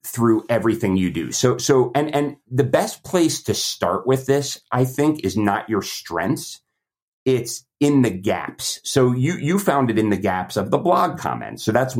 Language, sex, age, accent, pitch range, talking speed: English, male, 30-49, American, 95-125 Hz, 195 wpm